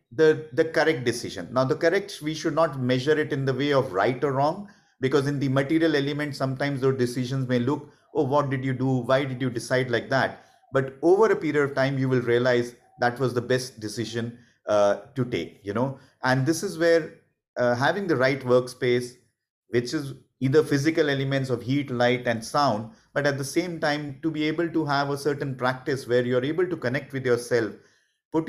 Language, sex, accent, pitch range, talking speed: English, male, Indian, 125-155 Hz, 210 wpm